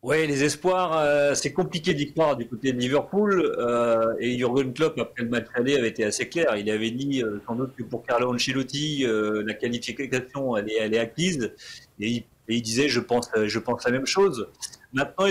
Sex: male